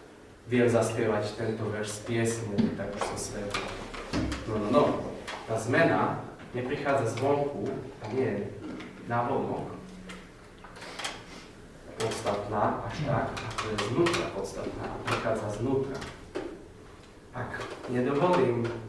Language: Slovak